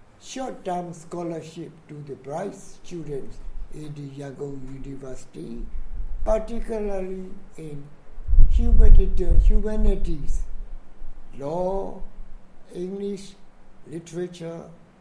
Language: English